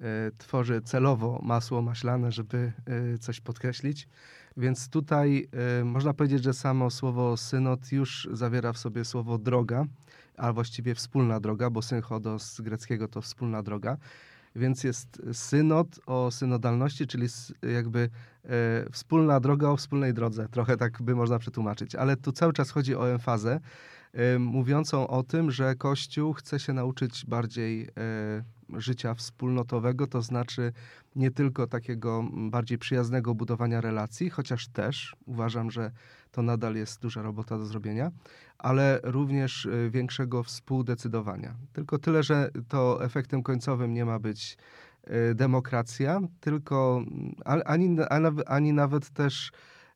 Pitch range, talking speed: 120-135 Hz, 125 wpm